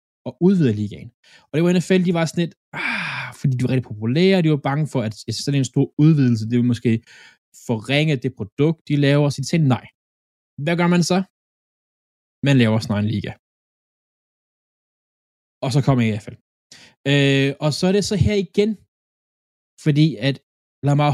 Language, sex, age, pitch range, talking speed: Danish, male, 20-39, 115-160 Hz, 175 wpm